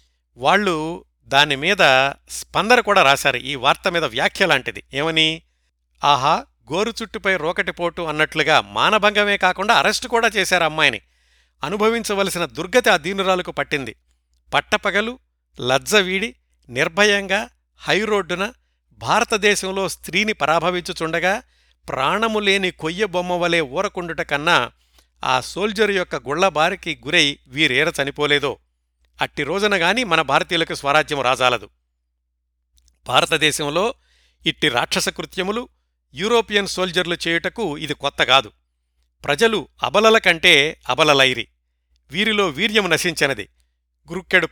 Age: 50-69